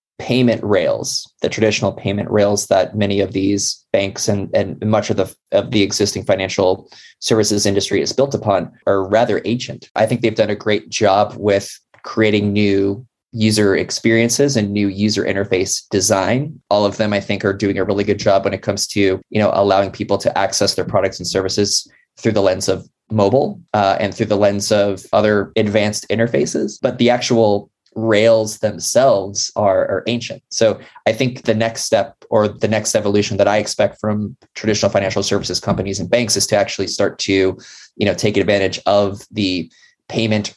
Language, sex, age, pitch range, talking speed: English, male, 20-39, 100-110 Hz, 185 wpm